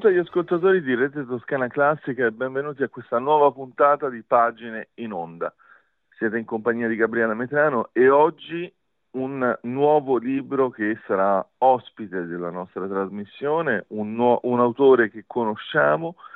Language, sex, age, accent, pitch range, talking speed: Italian, male, 40-59, native, 110-135 Hz, 145 wpm